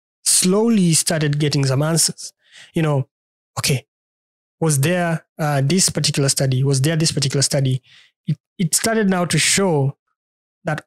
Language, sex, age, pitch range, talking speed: English, male, 20-39, 135-170 Hz, 145 wpm